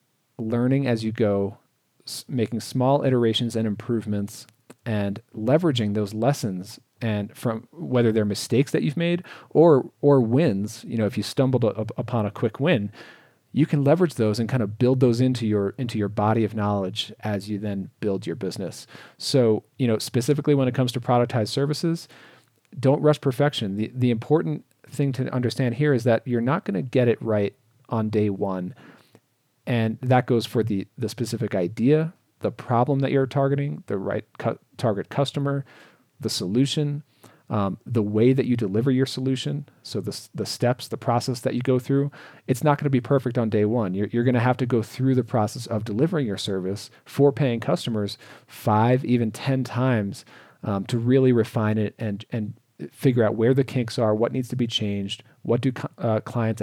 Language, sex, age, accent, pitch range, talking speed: English, male, 40-59, American, 110-135 Hz, 185 wpm